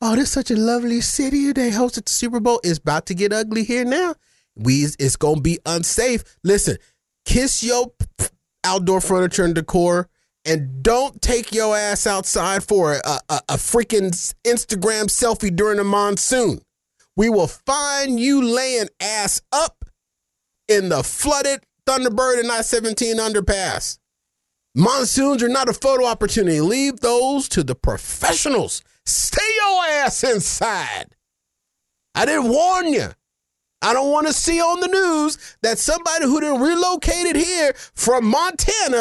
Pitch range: 195-275 Hz